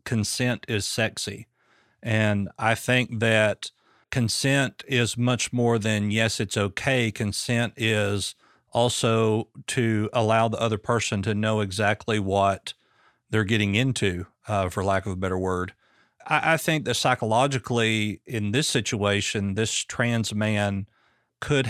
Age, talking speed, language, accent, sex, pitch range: 50-69, 135 wpm, English, American, male, 105-120 Hz